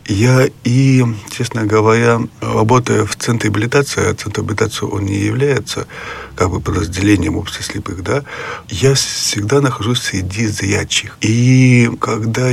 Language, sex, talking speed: Russian, male, 125 wpm